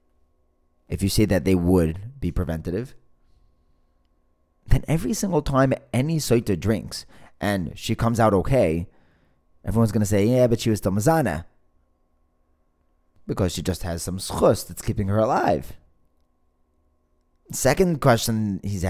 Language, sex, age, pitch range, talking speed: English, male, 20-39, 80-120 Hz, 135 wpm